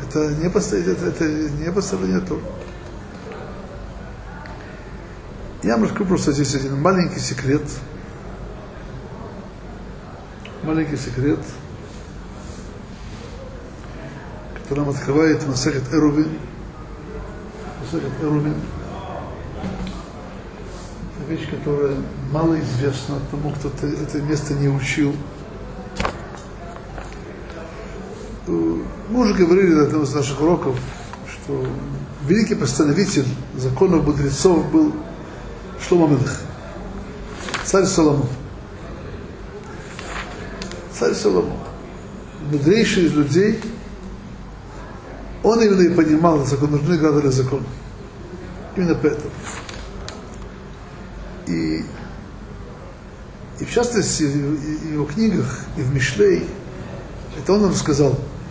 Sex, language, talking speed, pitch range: male, Russian, 80 wpm, 140-165 Hz